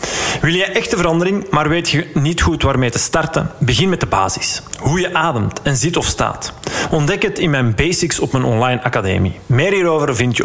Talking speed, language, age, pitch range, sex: 205 wpm, Dutch, 40-59, 120-155 Hz, male